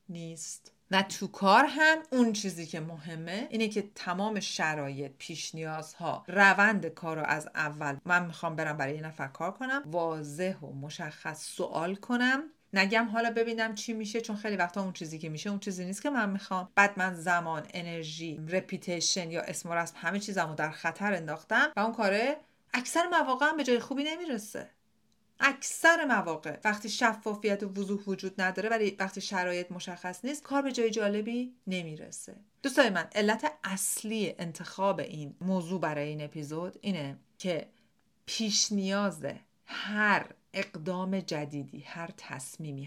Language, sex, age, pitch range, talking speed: Persian, female, 40-59, 165-215 Hz, 155 wpm